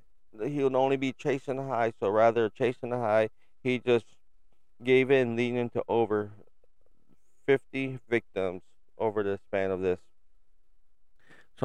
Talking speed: 145 wpm